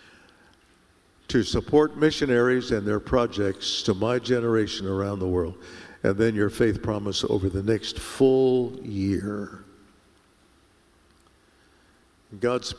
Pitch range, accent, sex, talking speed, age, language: 95-125 Hz, American, male, 110 wpm, 60-79, English